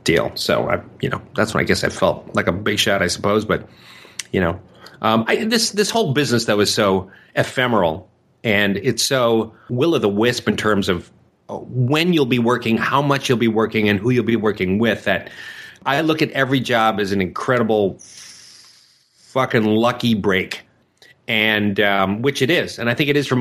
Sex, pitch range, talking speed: male, 105-140 Hz, 200 wpm